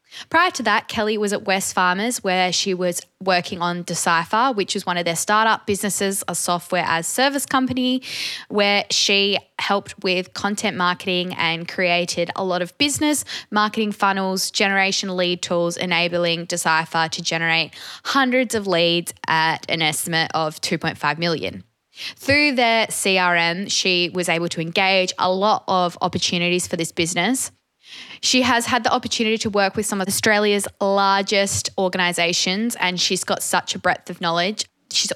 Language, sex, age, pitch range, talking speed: English, female, 10-29, 175-210 Hz, 160 wpm